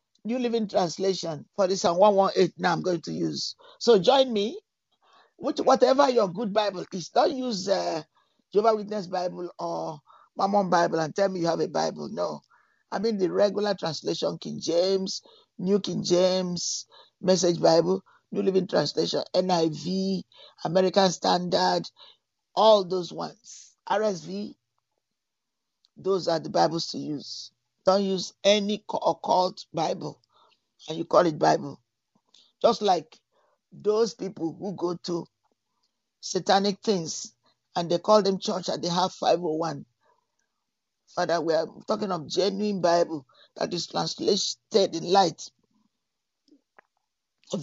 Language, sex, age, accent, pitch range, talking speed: English, male, 50-69, Nigerian, 170-205 Hz, 135 wpm